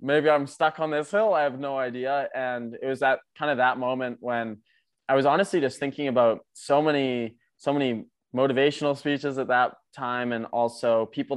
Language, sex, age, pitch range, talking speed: English, male, 20-39, 115-135 Hz, 195 wpm